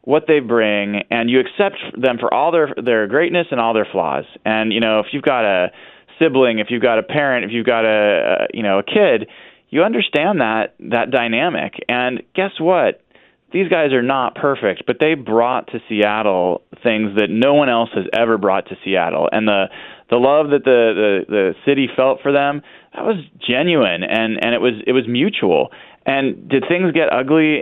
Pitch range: 110-145 Hz